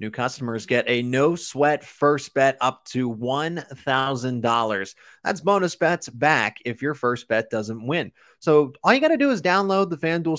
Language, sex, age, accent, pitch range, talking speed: English, male, 20-39, American, 120-165 Hz, 180 wpm